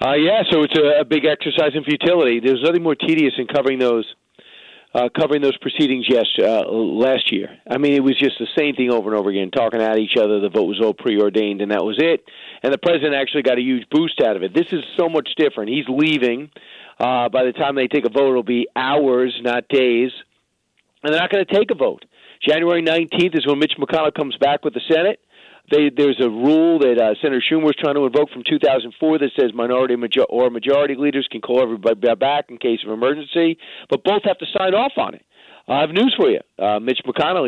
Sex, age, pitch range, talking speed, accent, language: male, 40-59, 125-170 Hz, 230 wpm, American, English